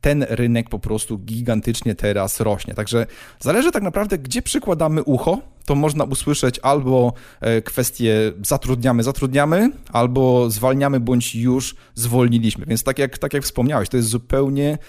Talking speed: 140 wpm